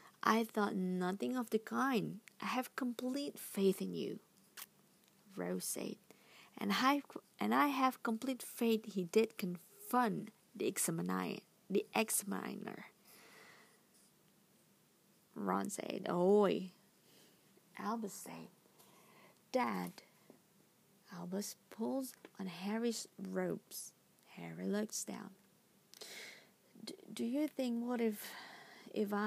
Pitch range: 195-235 Hz